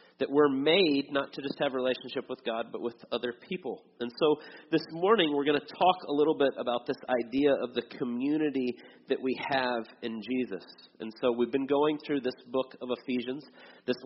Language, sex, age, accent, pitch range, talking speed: English, male, 30-49, American, 120-140 Hz, 205 wpm